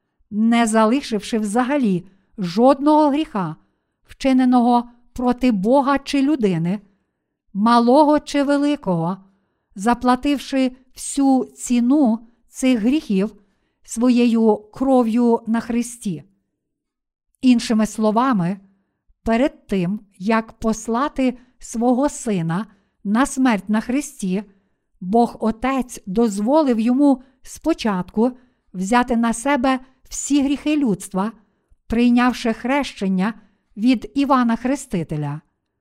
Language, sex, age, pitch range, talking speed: Ukrainian, female, 50-69, 210-265 Hz, 85 wpm